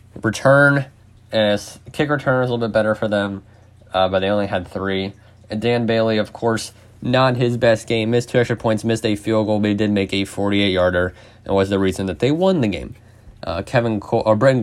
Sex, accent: male, American